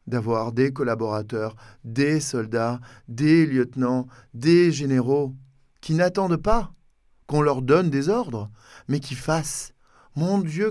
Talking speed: 125 wpm